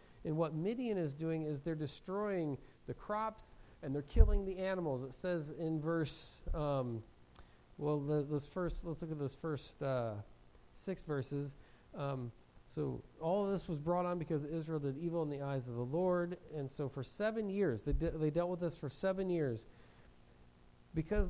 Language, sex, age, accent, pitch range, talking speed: English, male, 40-59, American, 135-185 Hz, 185 wpm